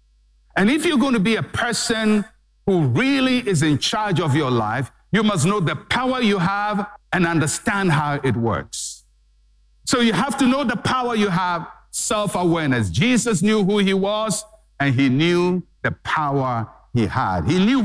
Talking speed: 175 wpm